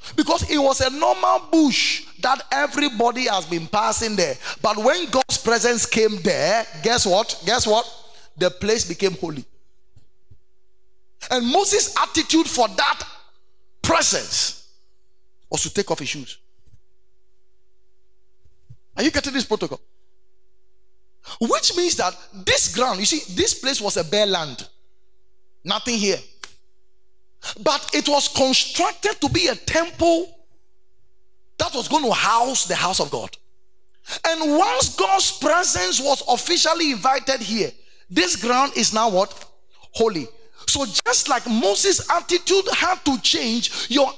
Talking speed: 135 wpm